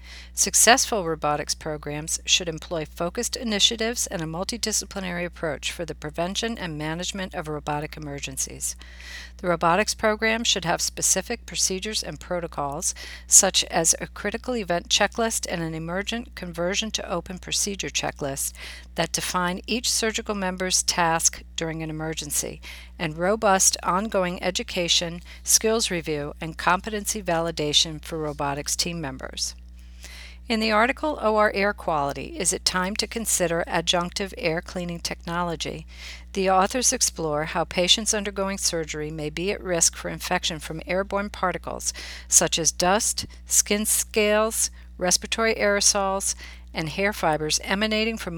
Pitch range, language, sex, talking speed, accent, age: 150-200 Hz, English, female, 135 wpm, American, 50-69